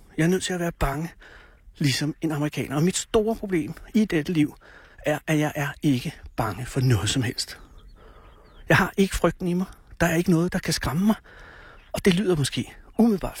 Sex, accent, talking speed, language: male, native, 205 wpm, Danish